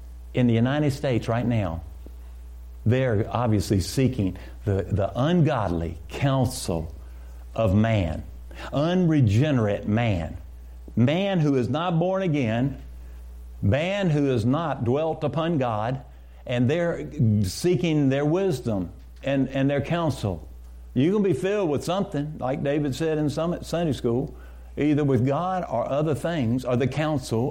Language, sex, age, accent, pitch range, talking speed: English, male, 60-79, American, 90-140 Hz, 135 wpm